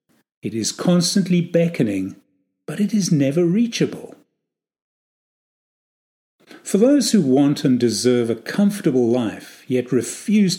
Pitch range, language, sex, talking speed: 120-185 Hz, English, male, 115 wpm